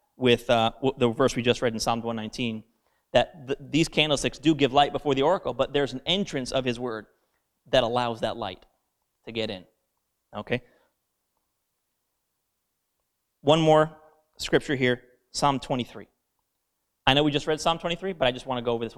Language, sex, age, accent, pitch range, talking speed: English, male, 30-49, American, 120-145 Hz, 175 wpm